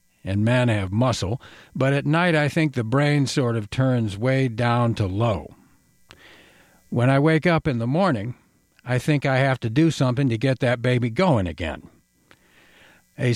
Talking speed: 175 wpm